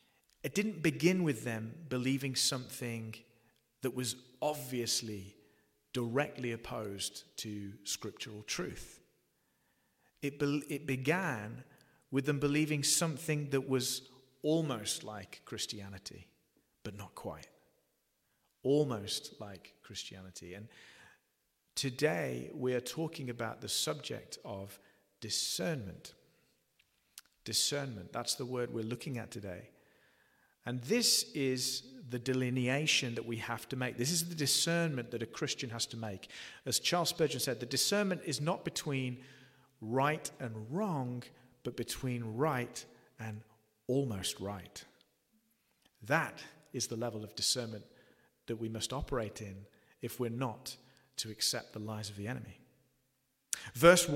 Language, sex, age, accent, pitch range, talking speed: English, male, 40-59, British, 115-150 Hz, 125 wpm